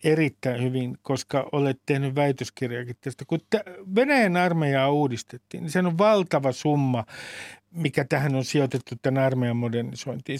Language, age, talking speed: Finnish, 50-69, 140 wpm